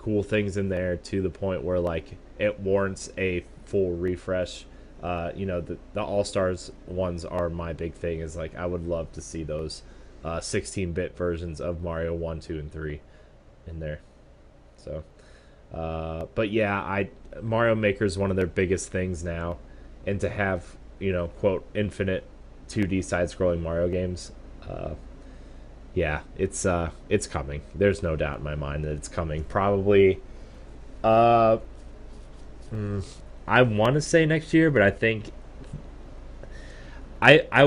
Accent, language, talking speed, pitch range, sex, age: American, English, 155 wpm, 85-100 Hz, male, 20-39